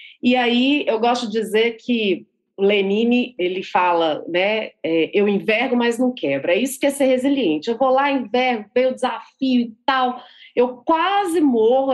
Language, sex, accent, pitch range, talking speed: Portuguese, female, Brazilian, 205-270 Hz, 180 wpm